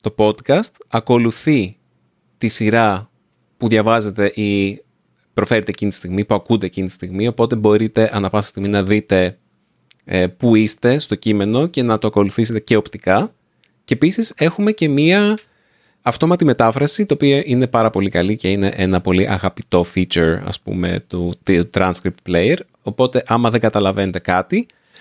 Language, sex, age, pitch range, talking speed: Greek, male, 30-49, 95-125 Hz, 155 wpm